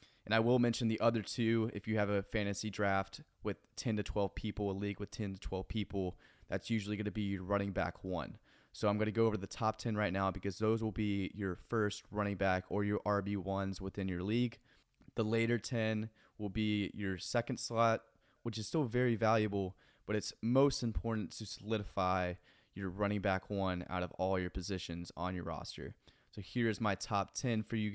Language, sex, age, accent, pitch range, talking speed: English, male, 20-39, American, 100-115 Hz, 210 wpm